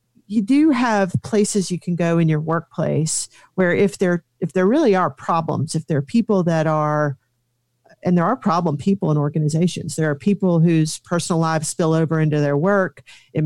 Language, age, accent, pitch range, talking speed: English, 40-59, American, 155-185 Hz, 190 wpm